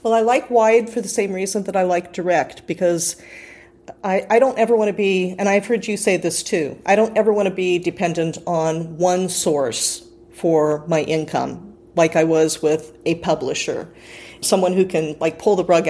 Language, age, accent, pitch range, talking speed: English, 40-59, American, 160-200 Hz, 200 wpm